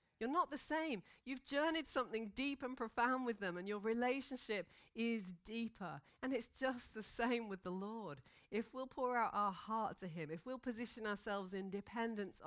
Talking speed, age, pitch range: 190 wpm, 40-59, 180-235 Hz